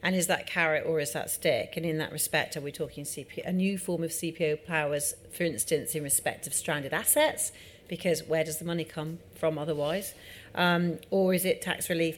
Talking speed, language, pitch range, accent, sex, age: 210 wpm, English, 155-180 Hz, British, female, 40-59